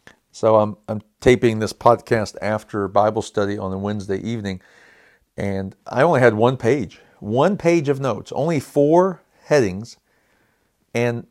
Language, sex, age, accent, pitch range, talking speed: English, male, 50-69, American, 105-130 Hz, 145 wpm